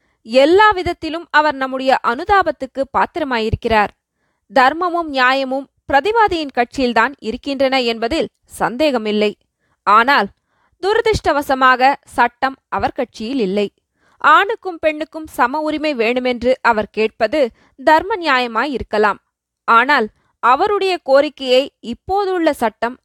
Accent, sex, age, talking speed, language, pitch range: native, female, 20-39, 85 wpm, Tamil, 240-320 Hz